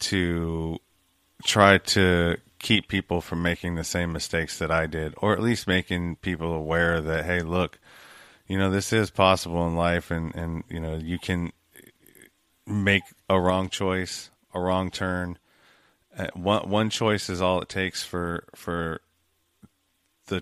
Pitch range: 85-100 Hz